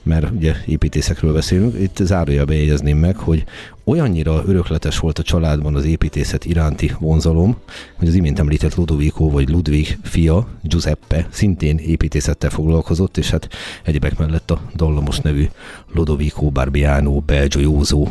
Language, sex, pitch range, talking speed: Hungarian, male, 75-85 Hz, 135 wpm